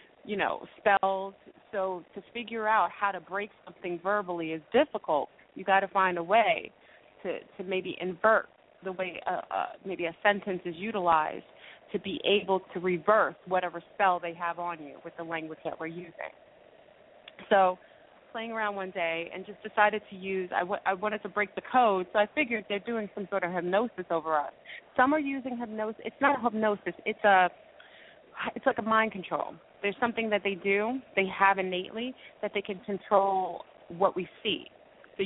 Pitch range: 180-215 Hz